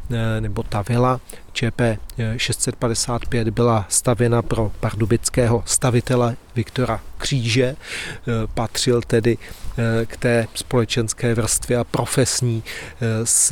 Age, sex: 30-49, male